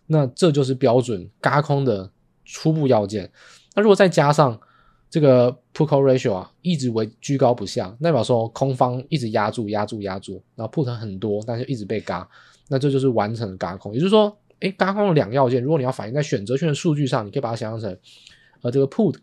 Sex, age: male, 20-39